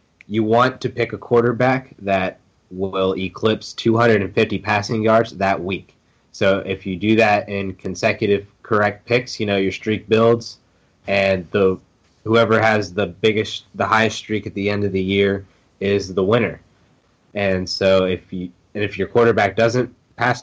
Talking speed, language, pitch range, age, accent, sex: 165 wpm, English, 95-110 Hz, 20-39, American, male